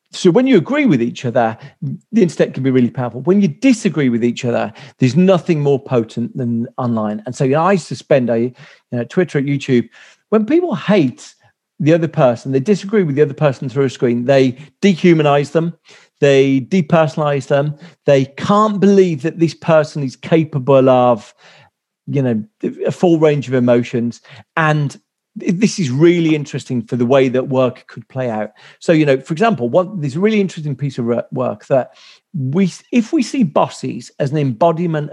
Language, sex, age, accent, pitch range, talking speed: English, male, 40-59, British, 125-180 Hz, 185 wpm